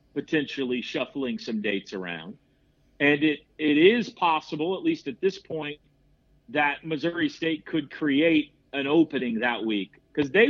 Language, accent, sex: English, American, male